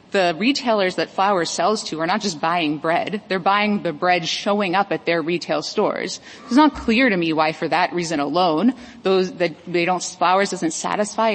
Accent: American